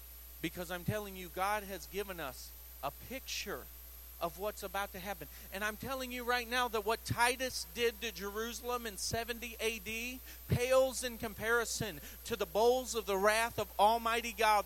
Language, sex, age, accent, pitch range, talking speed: English, male, 40-59, American, 190-245 Hz, 170 wpm